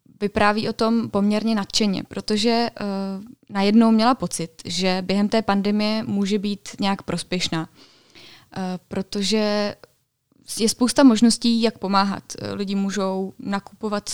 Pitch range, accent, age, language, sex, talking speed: 195-220 Hz, native, 20-39, Czech, female, 110 wpm